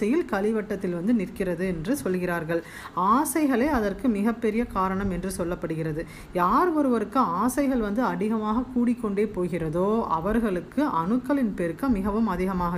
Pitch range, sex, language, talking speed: 185-255 Hz, female, Tamil, 100 wpm